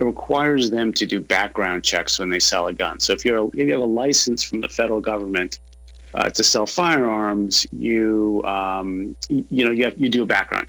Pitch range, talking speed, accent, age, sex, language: 100-120 Hz, 220 wpm, American, 40-59, male, English